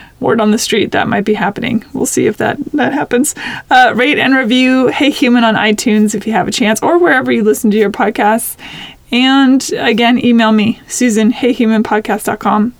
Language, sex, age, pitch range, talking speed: English, female, 20-39, 215-250 Hz, 185 wpm